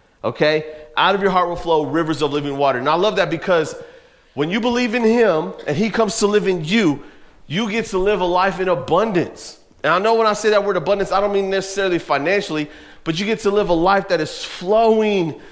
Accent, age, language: American, 30-49, English